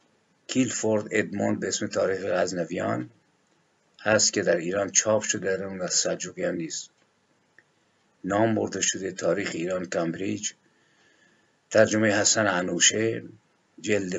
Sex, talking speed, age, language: male, 110 wpm, 50-69, Persian